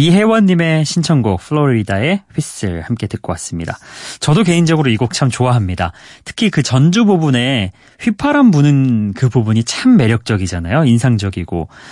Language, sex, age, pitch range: Korean, male, 30-49, 110-180 Hz